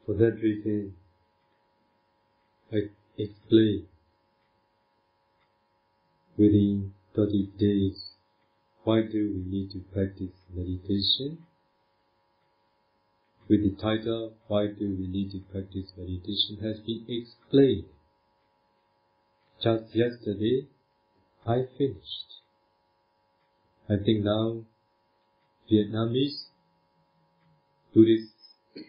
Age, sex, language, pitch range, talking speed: 50-69, male, Vietnamese, 105-115 Hz, 75 wpm